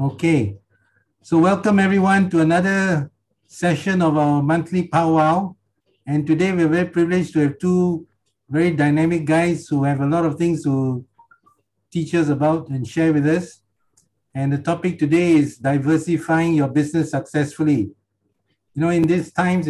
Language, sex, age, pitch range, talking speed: English, male, 60-79, 140-170 Hz, 150 wpm